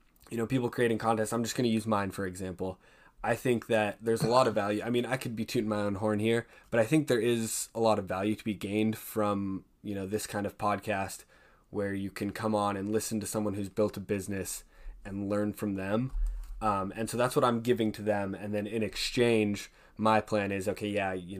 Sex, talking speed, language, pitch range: male, 240 wpm, English, 95-115 Hz